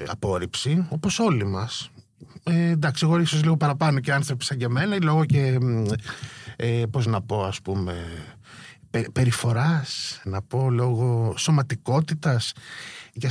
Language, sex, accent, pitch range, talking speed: Greek, male, native, 120-155 Hz, 135 wpm